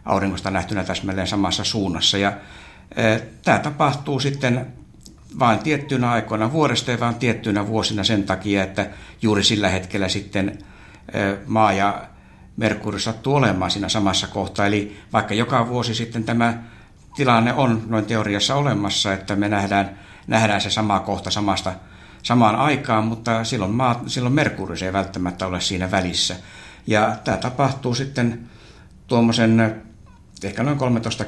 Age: 60-79